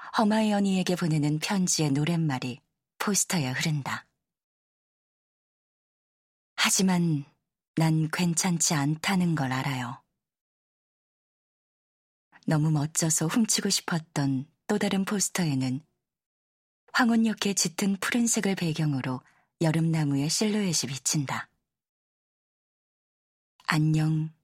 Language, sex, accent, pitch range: Korean, female, native, 140-185 Hz